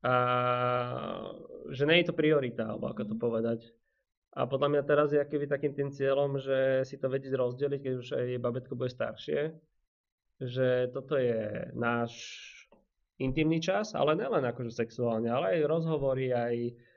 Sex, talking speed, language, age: male, 150 wpm, Slovak, 20-39